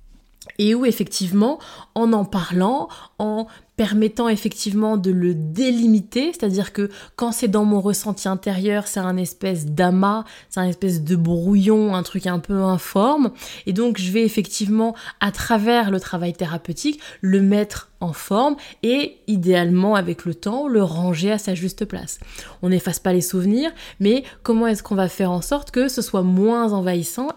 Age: 20-39